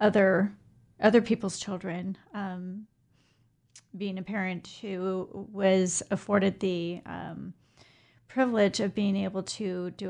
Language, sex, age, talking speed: English, female, 40-59, 115 wpm